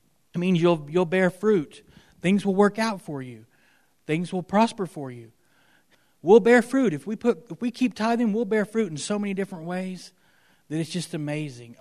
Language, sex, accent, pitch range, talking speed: English, male, American, 140-185 Hz, 200 wpm